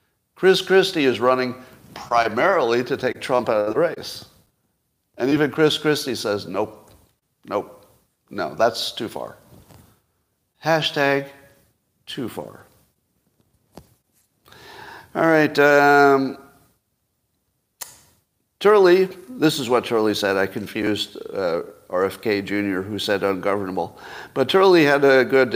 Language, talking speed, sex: English, 115 wpm, male